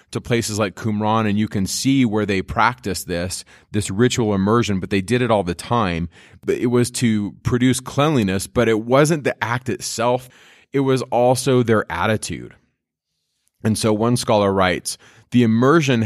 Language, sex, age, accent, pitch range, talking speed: English, male, 30-49, American, 95-120 Hz, 170 wpm